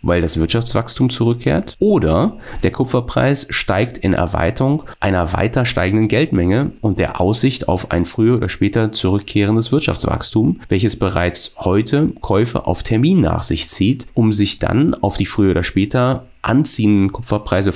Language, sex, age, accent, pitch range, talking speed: German, male, 30-49, German, 90-125 Hz, 145 wpm